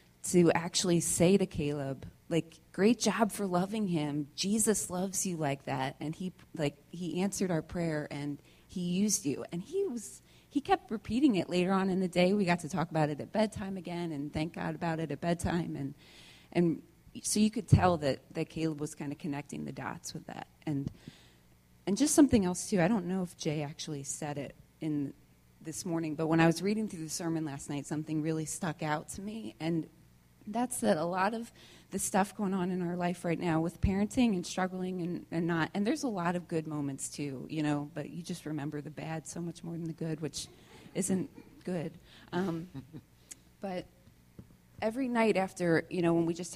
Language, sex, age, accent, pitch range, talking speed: English, female, 30-49, American, 150-190 Hz, 210 wpm